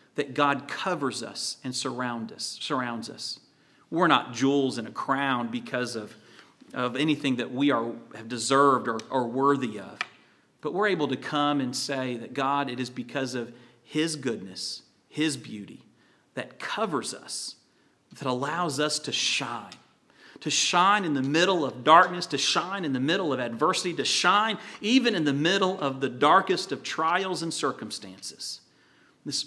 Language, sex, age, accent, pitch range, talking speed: English, male, 40-59, American, 125-150 Hz, 165 wpm